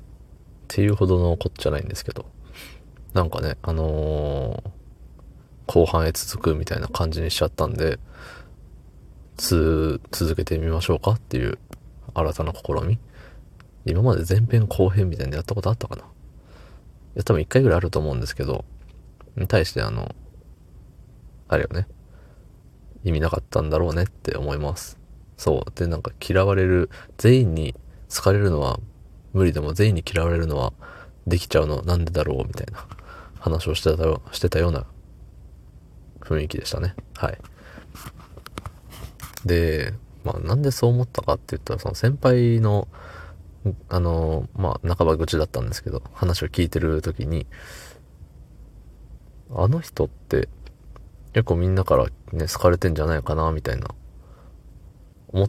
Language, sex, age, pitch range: Japanese, male, 20-39, 80-100 Hz